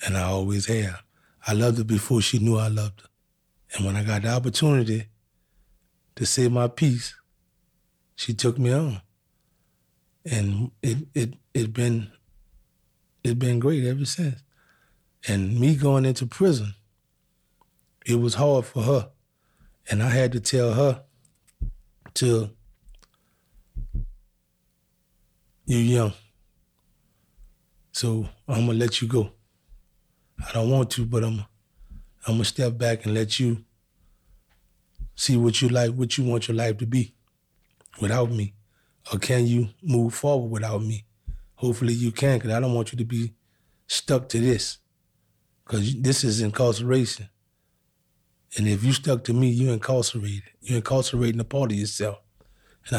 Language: English